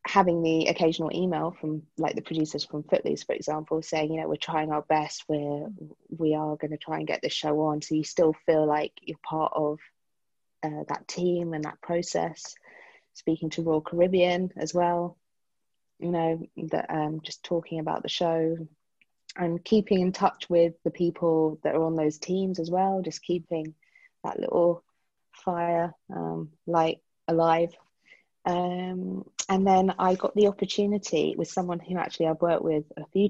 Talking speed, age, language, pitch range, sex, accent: 175 wpm, 20-39, English, 155-180 Hz, female, British